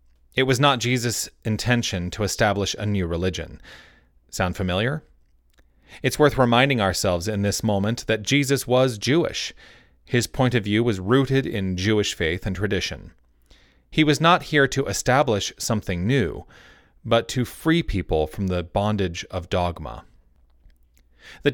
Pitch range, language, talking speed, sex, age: 90-125 Hz, English, 145 wpm, male, 30-49